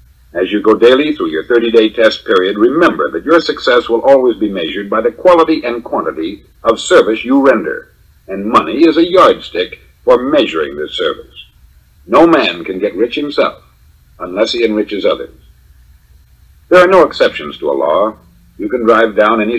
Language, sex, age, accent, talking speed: English, male, 50-69, American, 175 wpm